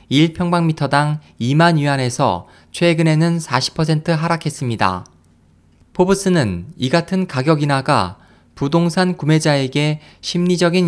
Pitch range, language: 120-165 Hz, Korean